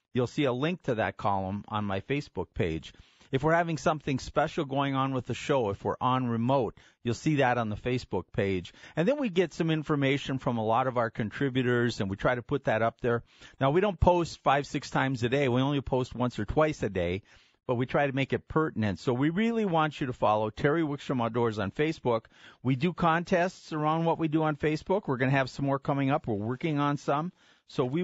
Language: English